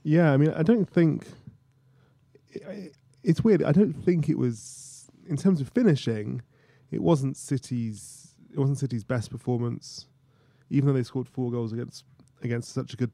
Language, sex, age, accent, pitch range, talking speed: English, male, 20-39, British, 120-145 Hz, 175 wpm